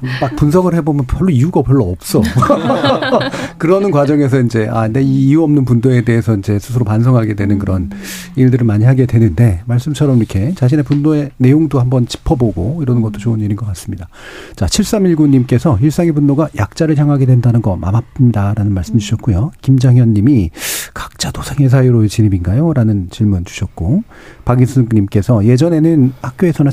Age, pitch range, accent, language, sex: 40-59, 105-145 Hz, native, Korean, male